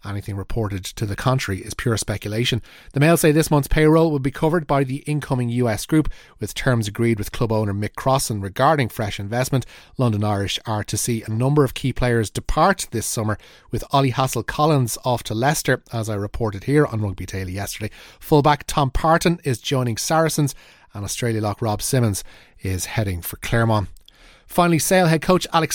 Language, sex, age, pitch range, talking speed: English, male, 30-49, 105-150 Hz, 190 wpm